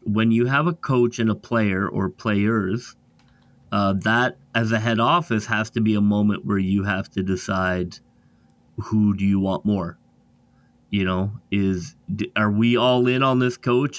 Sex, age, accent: male, 30-49, American